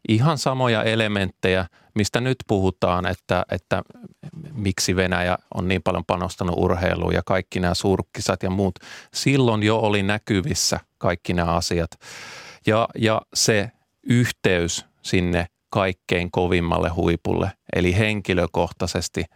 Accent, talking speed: native, 120 wpm